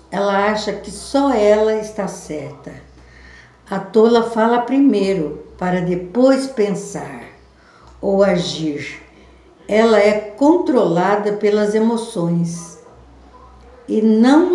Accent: Brazilian